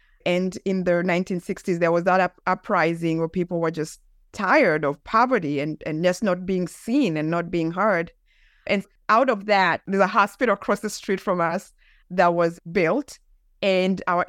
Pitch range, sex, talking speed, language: 175-220 Hz, female, 175 wpm, English